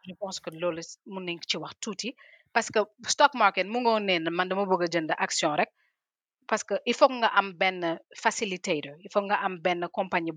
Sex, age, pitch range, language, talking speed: female, 30-49, 175-220 Hz, French, 220 wpm